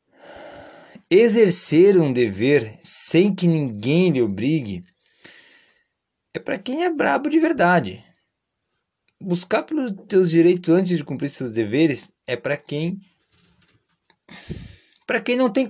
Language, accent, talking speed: Portuguese, Brazilian, 120 wpm